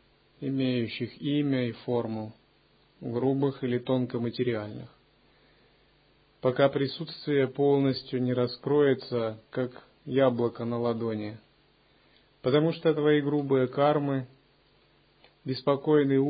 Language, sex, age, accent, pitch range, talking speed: Russian, male, 30-49, native, 120-140 Hz, 80 wpm